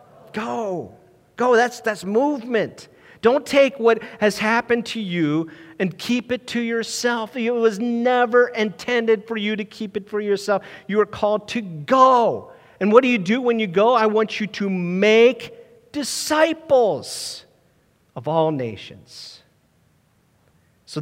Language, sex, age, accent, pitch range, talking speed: English, male, 50-69, American, 135-215 Hz, 145 wpm